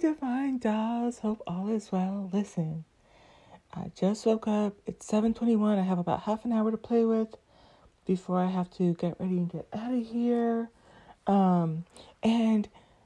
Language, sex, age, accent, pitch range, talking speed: English, female, 30-49, American, 180-230 Hz, 165 wpm